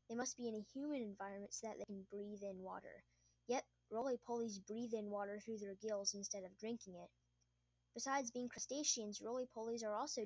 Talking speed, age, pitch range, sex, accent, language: 185 wpm, 10-29, 195-235 Hz, female, American, English